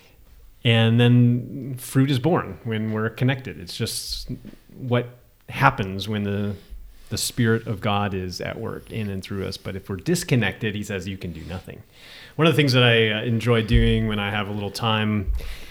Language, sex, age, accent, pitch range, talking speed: English, male, 30-49, American, 100-125 Hz, 185 wpm